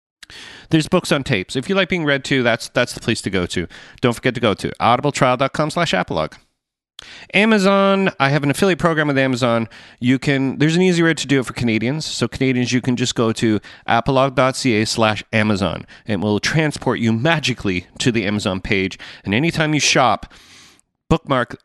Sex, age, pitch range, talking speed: male, 30-49, 110-145 Hz, 185 wpm